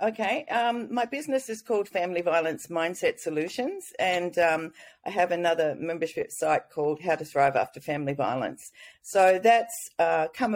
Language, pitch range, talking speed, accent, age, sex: English, 155-230 Hz, 160 wpm, Australian, 40-59, female